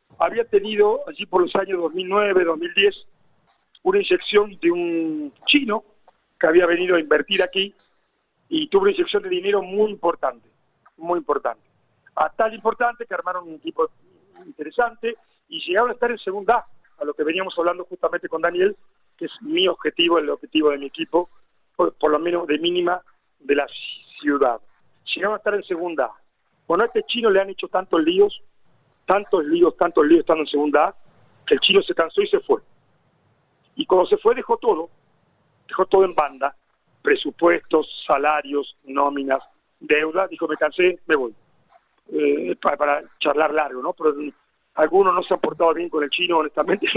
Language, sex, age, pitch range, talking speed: Spanish, male, 40-59, 160-260 Hz, 170 wpm